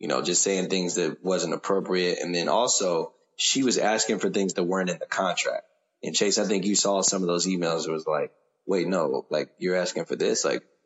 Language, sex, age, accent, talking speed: English, male, 20-39, American, 230 wpm